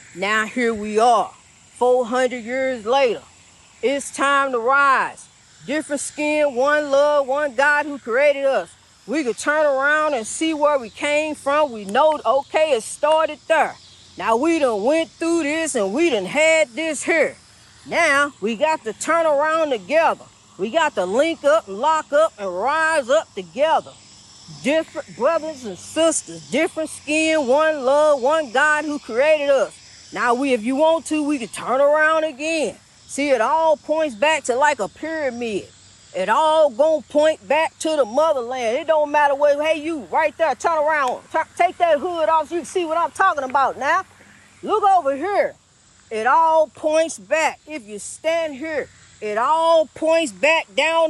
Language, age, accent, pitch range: English, 40-59, American, 270-315 Hz